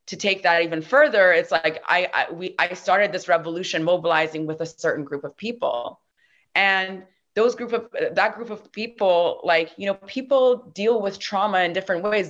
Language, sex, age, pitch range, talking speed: English, female, 20-39, 160-200 Hz, 190 wpm